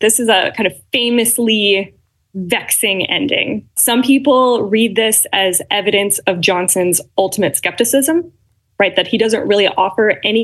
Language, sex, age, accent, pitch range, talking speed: English, female, 20-39, American, 185-240 Hz, 145 wpm